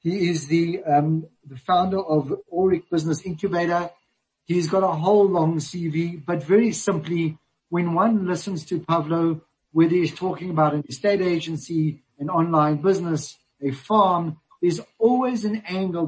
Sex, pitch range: male, 155-190 Hz